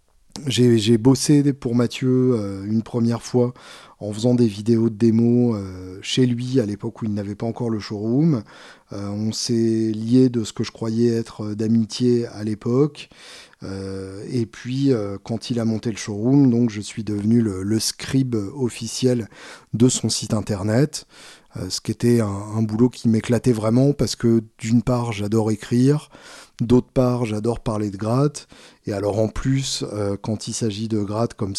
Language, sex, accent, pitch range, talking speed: French, male, French, 105-125 Hz, 175 wpm